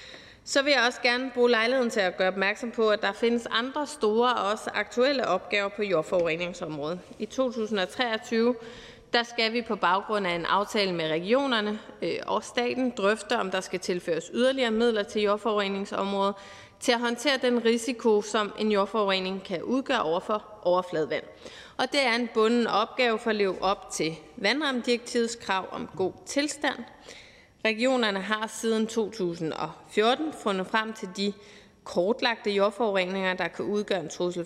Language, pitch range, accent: Danish, 195-245 Hz, native